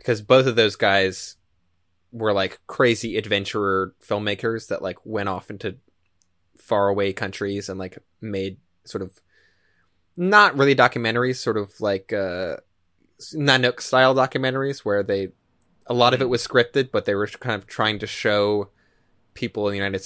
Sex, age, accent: male, 20-39, American